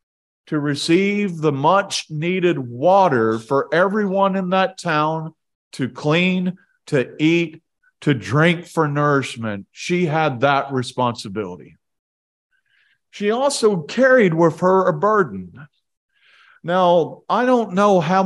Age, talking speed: 40-59, 110 wpm